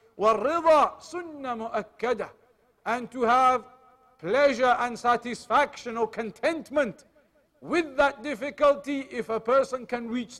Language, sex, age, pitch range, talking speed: English, male, 50-69, 215-260 Hz, 90 wpm